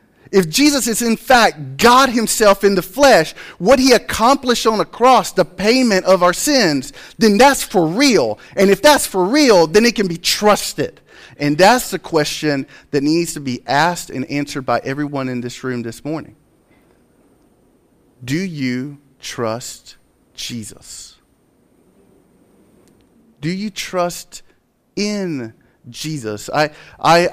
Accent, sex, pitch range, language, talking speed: American, male, 145-205 Hz, English, 140 wpm